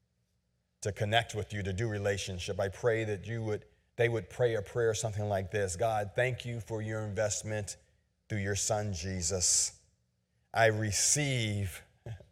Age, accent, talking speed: 40-59, American, 155 wpm